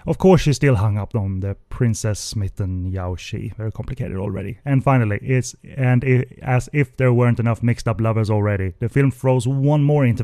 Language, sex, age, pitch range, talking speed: English, male, 30-49, 105-130 Hz, 205 wpm